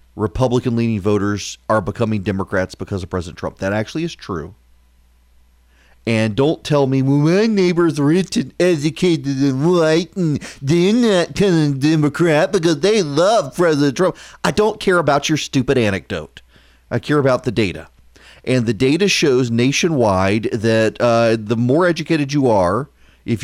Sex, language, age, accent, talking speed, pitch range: male, English, 40-59, American, 160 wpm, 110-160 Hz